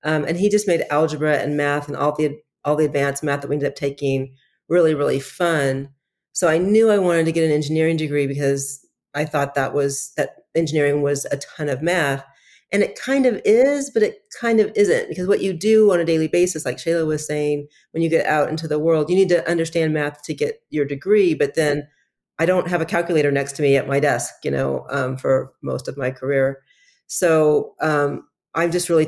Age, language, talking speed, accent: 40-59, English, 225 wpm, American